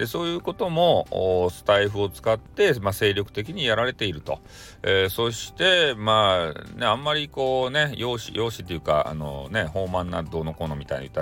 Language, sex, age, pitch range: Japanese, male, 40-59, 90-140 Hz